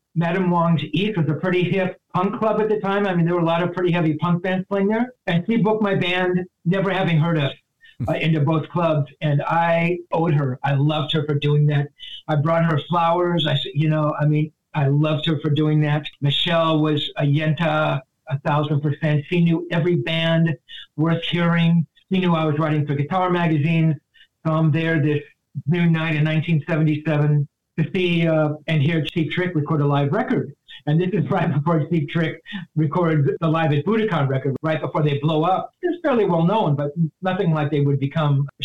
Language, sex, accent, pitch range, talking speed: English, male, American, 150-180 Hz, 205 wpm